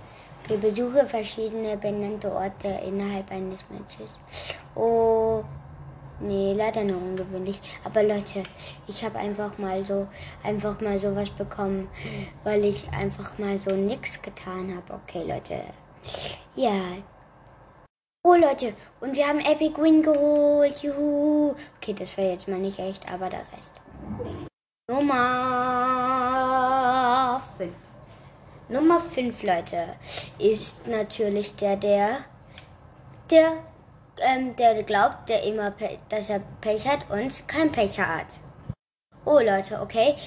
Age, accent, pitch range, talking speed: 10-29, German, 195-245 Hz, 120 wpm